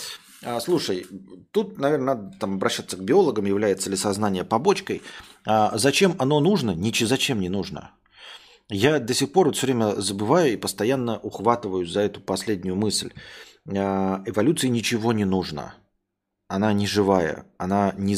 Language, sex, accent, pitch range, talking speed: Russian, male, native, 100-135 Hz, 140 wpm